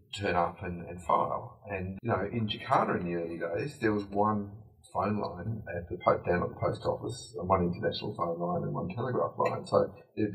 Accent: Australian